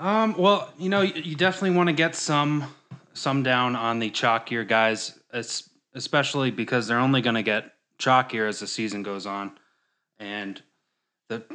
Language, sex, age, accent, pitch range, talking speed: English, male, 20-39, American, 105-130 Hz, 160 wpm